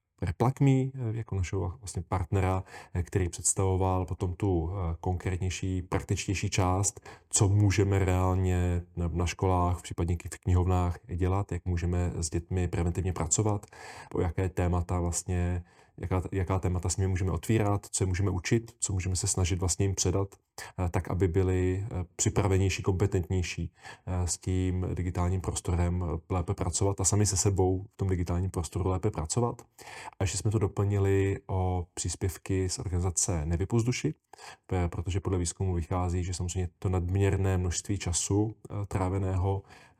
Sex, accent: male, native